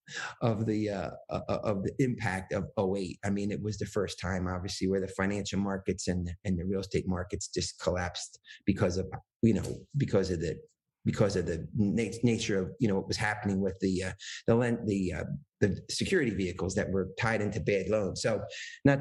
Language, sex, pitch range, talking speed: English, male, 100-130 Hz, 195 wpm